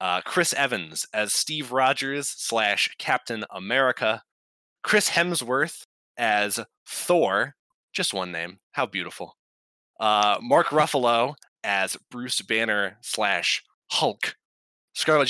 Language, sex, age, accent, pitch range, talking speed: English, male, 20-39, American, 100-135 Hz, 105 wpm